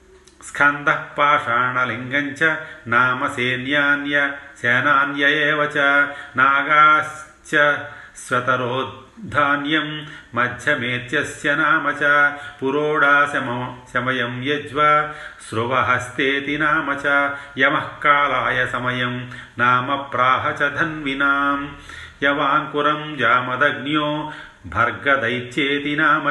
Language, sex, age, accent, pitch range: Telugu, male, 40-59, native, 130-150 Hz